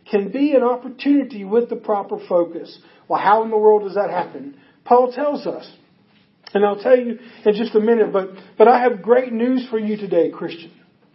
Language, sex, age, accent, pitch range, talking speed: English, male, 50-69, American, 205-255 Hz, 200 wpm